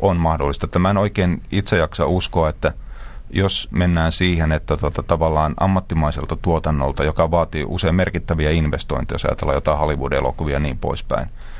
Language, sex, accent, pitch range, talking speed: Finnish, male, native, 75-90 Hz, 150 wpm